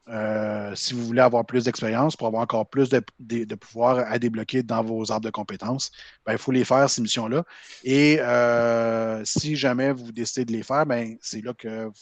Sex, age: male, 30-49